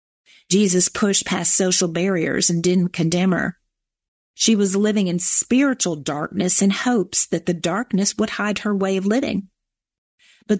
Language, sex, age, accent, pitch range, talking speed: English, female, 40-59, American, 180-230 Hz, 155 wpm